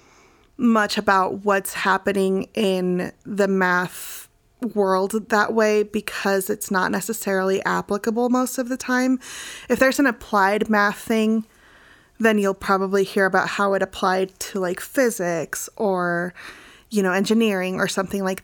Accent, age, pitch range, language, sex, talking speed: American, 20-39, 185-210 Hz, English, female, 140 wpm